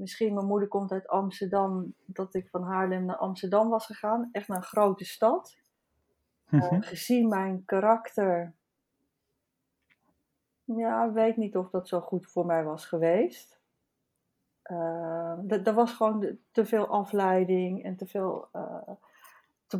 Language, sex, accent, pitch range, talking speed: Dutch, female, Dutch, 185-220 Hz, 150 wpm